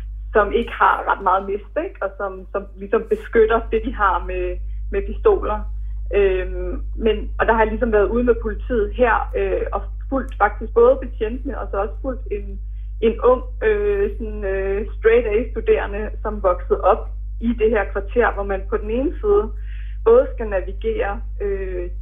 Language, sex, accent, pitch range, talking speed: Danish, female, native, 195-250 Hz, 170 wpm